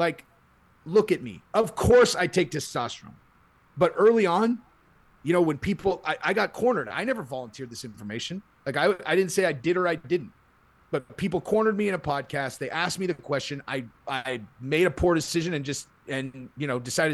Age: 30-49